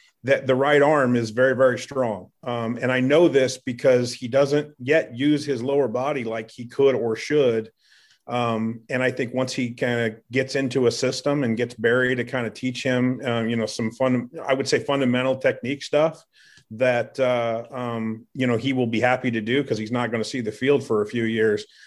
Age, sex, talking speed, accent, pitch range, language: 40-59, male, 220 wpm, American, 115-140 Hz, English